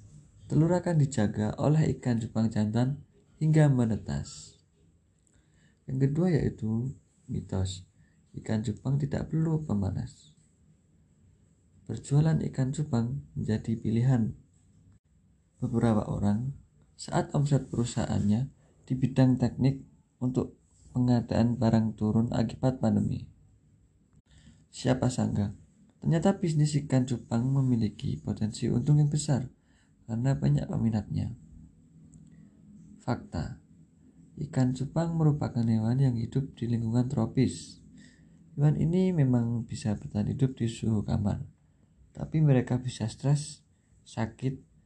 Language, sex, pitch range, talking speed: Indonesian, male, 105-135 Hz, 100 wpm